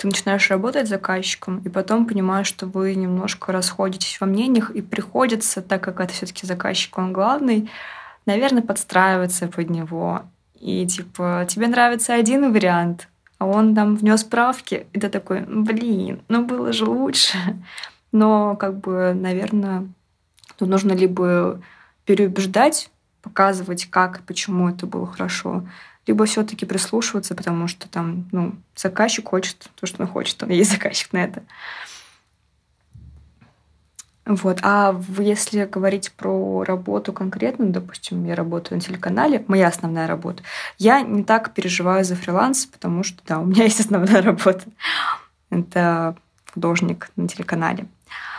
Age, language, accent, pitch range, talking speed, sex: 20-39, Russian, native, 180-215 Hz, 140 wpm, female